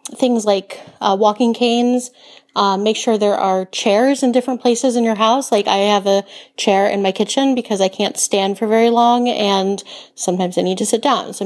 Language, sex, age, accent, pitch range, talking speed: English, female, 30-49, American, 195-235 Hz, 210 wpm